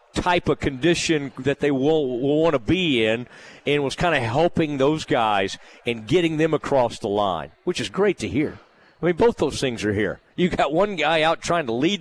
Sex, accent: male, American